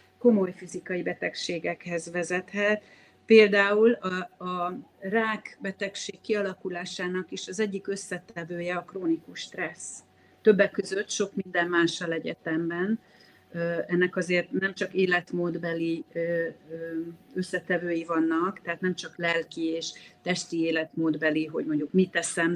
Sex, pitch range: female, 175-200 Hz